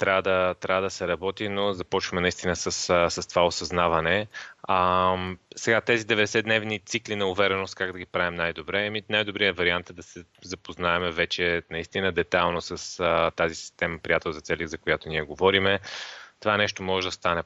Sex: male